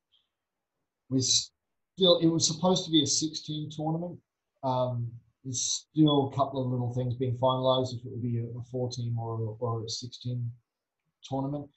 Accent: Australian